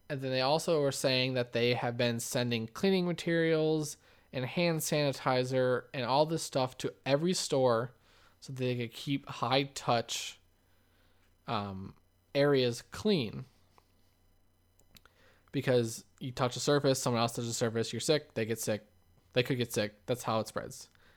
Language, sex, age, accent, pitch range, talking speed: English, male, 20-39, American, 110-140 Hz, 150 wpm